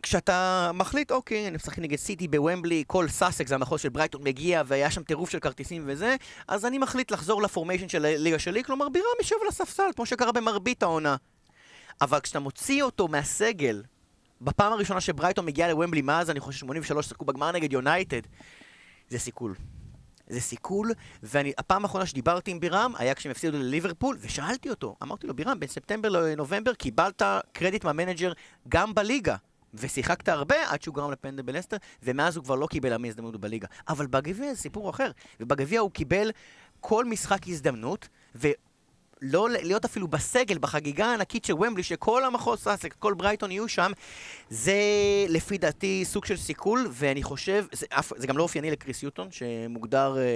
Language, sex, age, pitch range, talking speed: Hebrew, male, 30-49, 140-205 Hz, 150 wpm